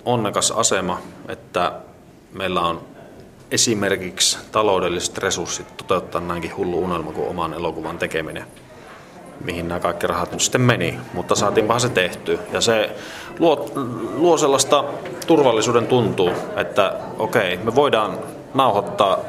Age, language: 30-49, Finnish